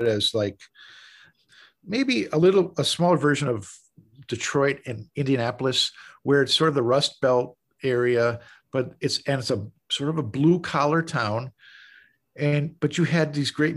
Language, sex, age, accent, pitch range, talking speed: English, male, 50-69, American, 115-145 Hz, 160 wpm